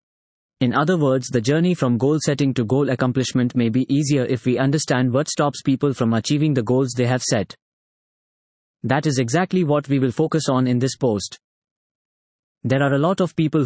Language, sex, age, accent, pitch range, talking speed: English, male, 20-39, Indian, 125-155 Hz, 195 wpm